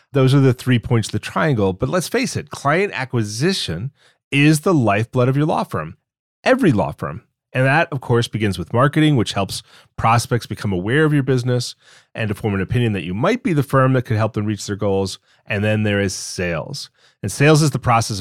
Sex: male